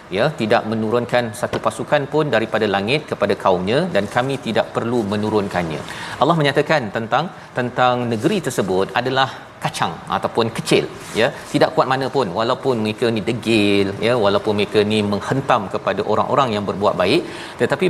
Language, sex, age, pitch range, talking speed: Malayalam, male, 40-59, 110-145 Hz, 150 wpm